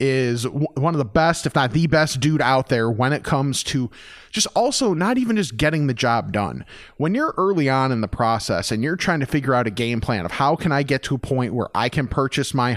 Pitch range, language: 125-165 Hz, English